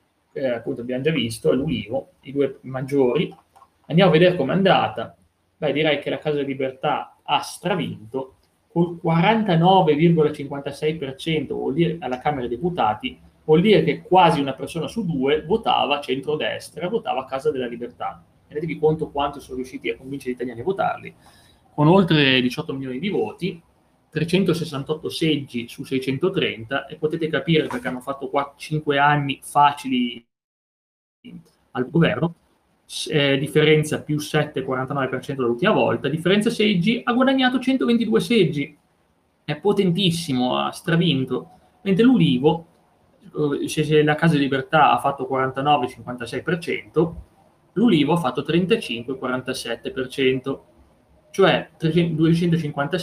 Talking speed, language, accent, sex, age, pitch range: 125 wpm, Italian, native, male, 30-49, 130-165 Hz